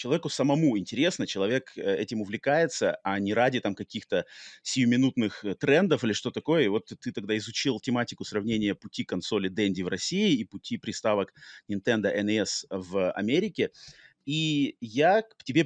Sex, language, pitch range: male, Russian, 105-140 Hz